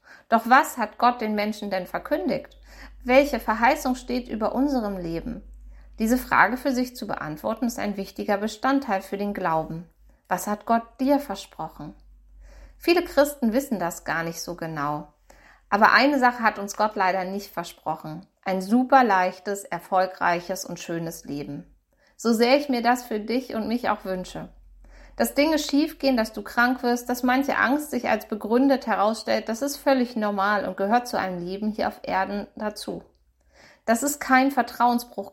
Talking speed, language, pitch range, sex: 165 wpm, German, 190-250 Hz, female